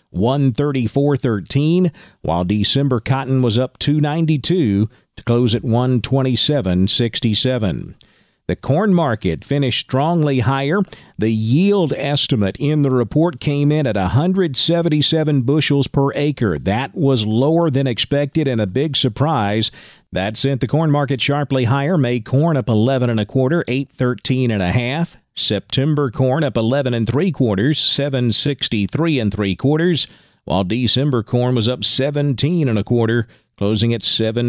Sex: male